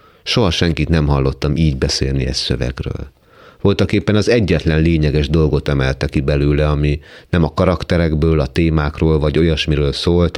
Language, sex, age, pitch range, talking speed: Hungarian, male, 30-49, 75-95 Hz, 150 wpm